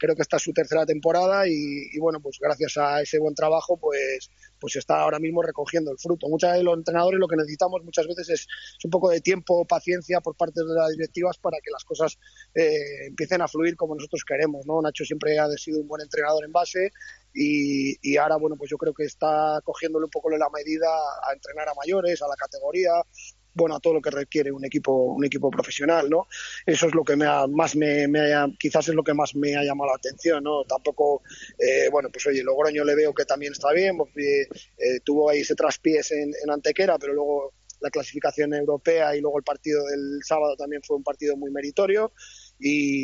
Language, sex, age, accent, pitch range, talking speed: Spanish, male, 20-39, Spanish, 145-170 Hz, 220 wpm